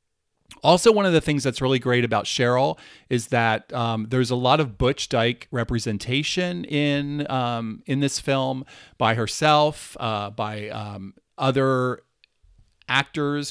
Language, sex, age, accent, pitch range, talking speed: English, male, 40-59, American, 110-135 Hz, 140 wpm